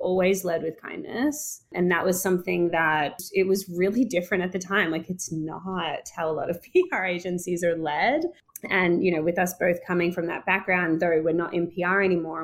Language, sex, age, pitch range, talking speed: English, female, 20-39, 160-185 Hz, 210 wpm